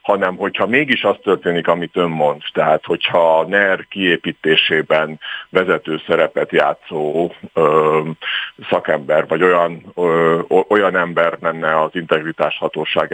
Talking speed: 130 wpm